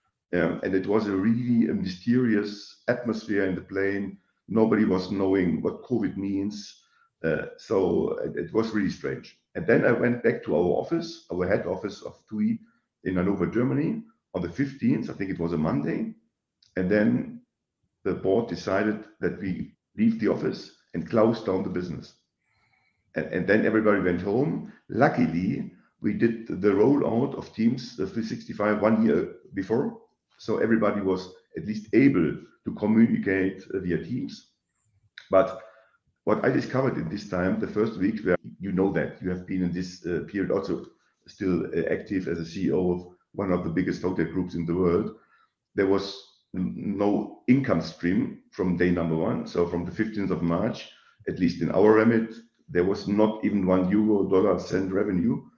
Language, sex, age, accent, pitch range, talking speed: English, male, 50-69, German, 95-115 Hz, 175 wpm